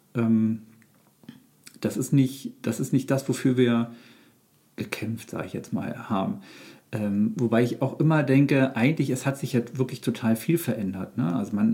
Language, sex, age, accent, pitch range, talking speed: German, male, 50-69, German, 115-130 Hz, 170 wpm